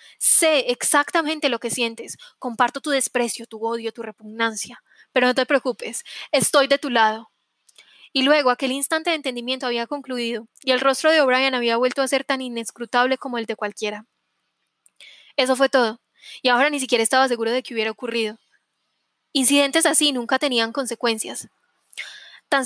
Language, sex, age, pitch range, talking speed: Spanish, female, 10-29, 235-290 Hz, 165 wpm